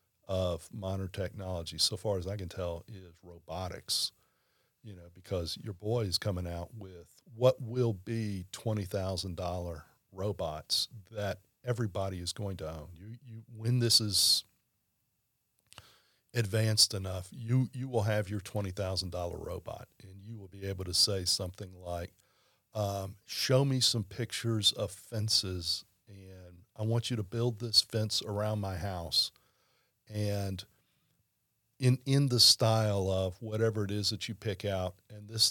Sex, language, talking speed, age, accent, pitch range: male, English, 155 wpm, 40-59, American, 95-110 Hz